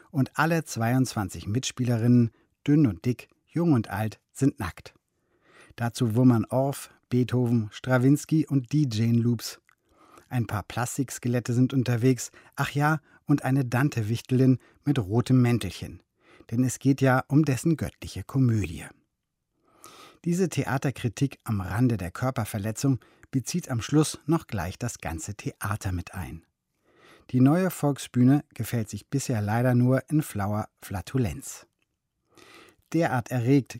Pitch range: 110-135 Hz